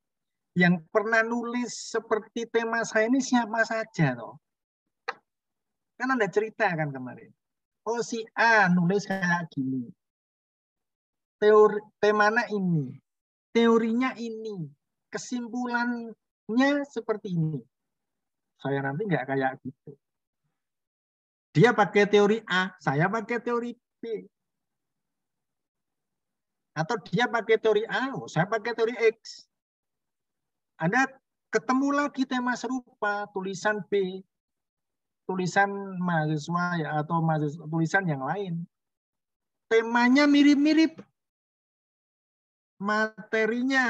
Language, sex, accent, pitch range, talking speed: Indonesian, male, native, 165-230 Hz, 95 wpm